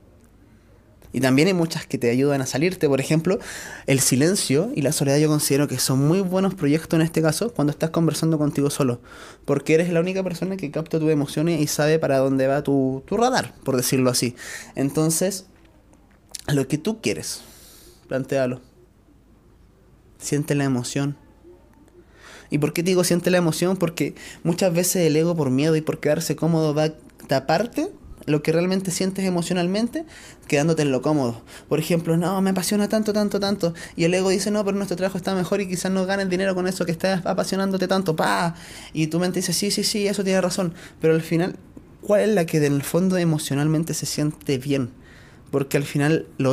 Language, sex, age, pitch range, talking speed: Spanish, male, 20-39, 140-180 Hz, 190 wpm